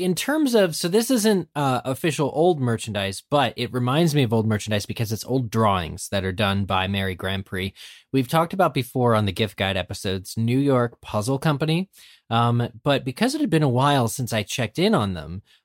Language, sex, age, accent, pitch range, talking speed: English, male, 20-39, American, 100-140 Hz, 210 wpm